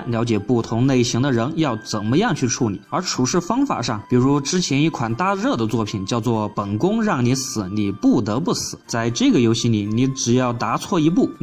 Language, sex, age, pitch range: Chinese, male, 20-39, 115-150 Hz